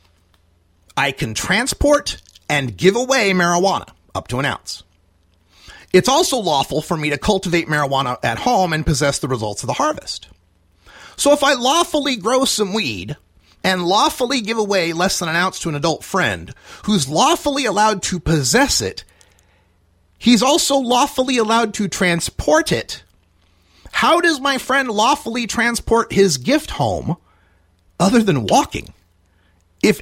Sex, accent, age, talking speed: male, American, 40-59, 145 wpm